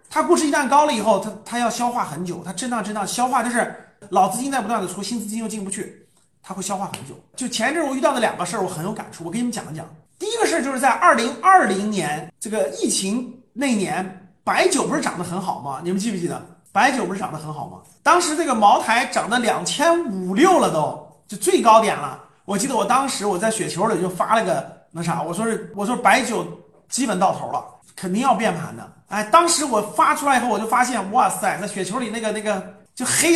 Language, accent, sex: Chinese, native, male